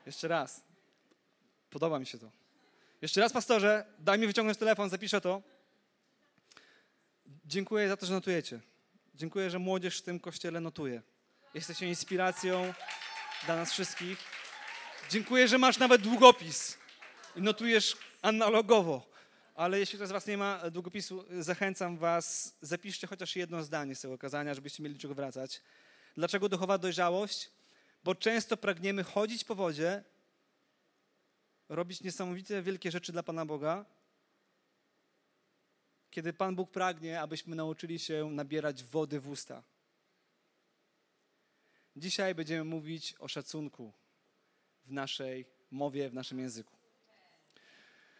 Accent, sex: native, male